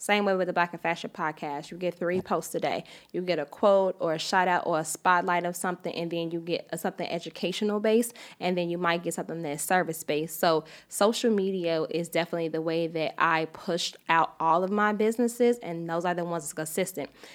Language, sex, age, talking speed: English, female, 10-29, 220 wpm